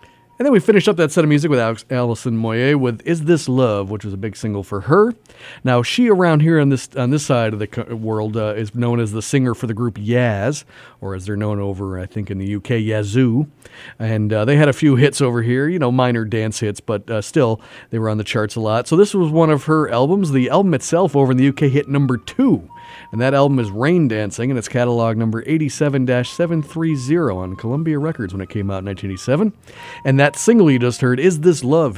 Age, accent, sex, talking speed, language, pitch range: 40-59, American, male, 240 wpm, English, 110-155 Hz